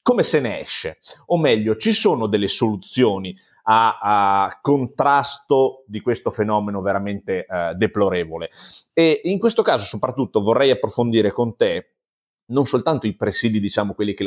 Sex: male